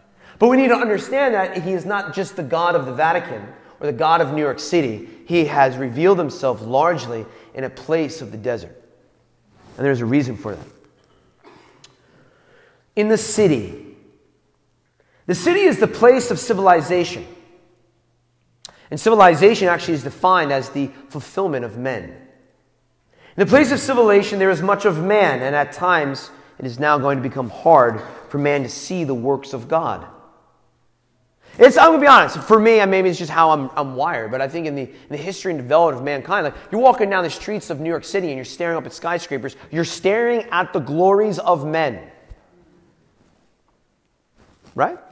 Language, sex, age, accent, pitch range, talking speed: English, male, 30-49, American, 135-195 Hz, 185 wpm